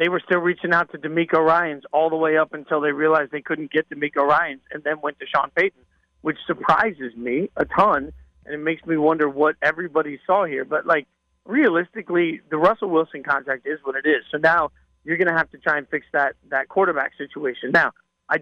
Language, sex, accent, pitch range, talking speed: English, male, American, 140-165 Hz, 220 wpm